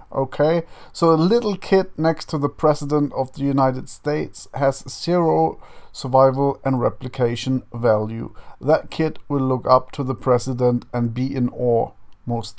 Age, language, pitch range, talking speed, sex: 40-59, English, 125-160 Hz, 155 wpm, male